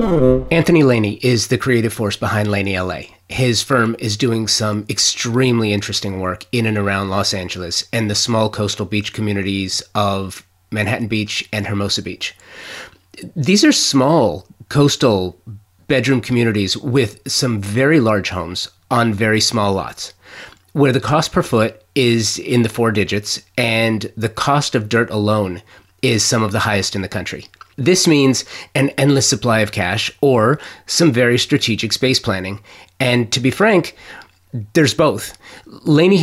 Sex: male